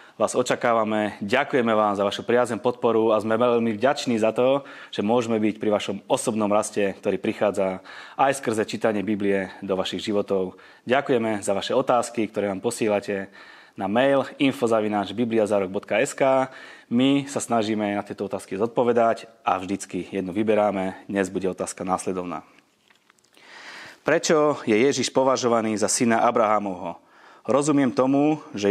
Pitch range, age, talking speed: 100-125 Hz, 20-39, 135 wpm